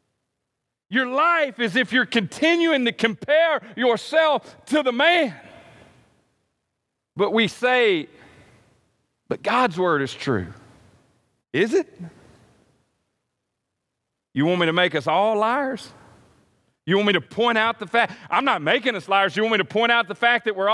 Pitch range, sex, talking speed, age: 210-290 Hz, male, 155 wpm, 40-59